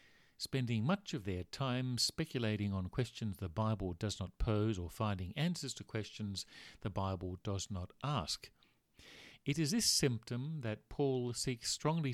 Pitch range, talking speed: 95-125 Hz, 155 wpm